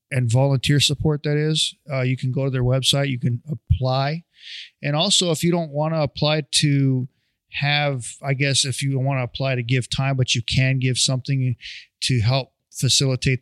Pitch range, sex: 125-140 Hz, male